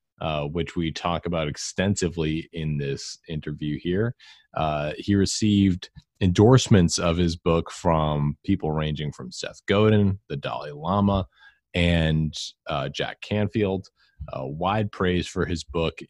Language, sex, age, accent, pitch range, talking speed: English, male, 30-49, American, 75-95 Hz, 135 wpm